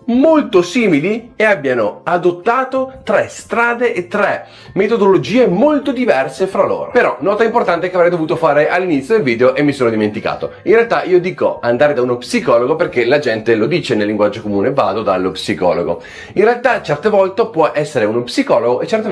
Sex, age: male, 30-49